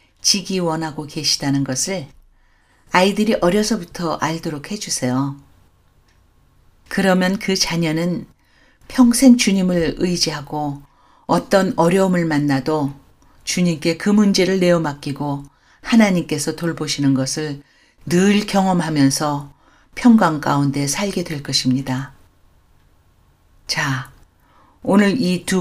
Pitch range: 135-190 Hz